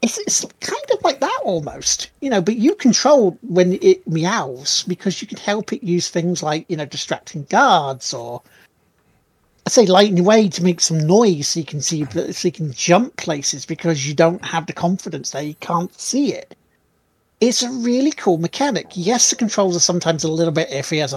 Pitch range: 160-200 Hz